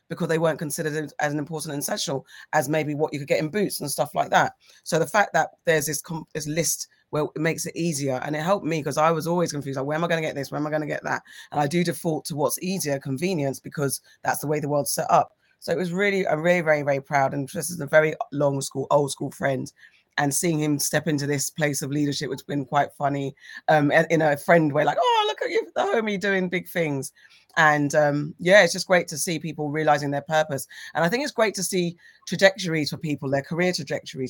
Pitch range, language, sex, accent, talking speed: 145-170 Hz, English, female, British, 255 wpm